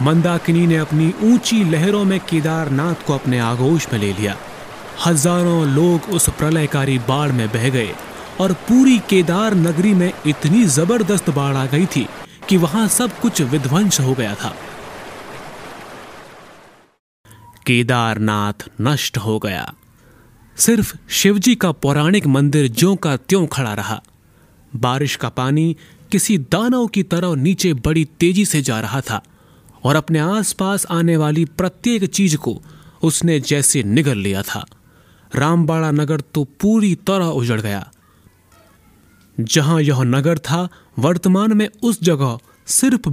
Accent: native